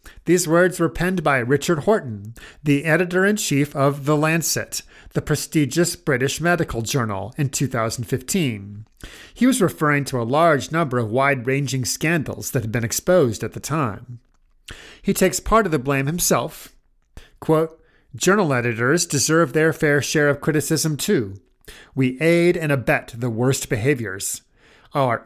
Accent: American